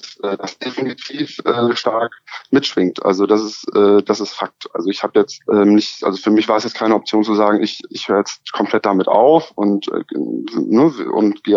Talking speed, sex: 205 wpm, male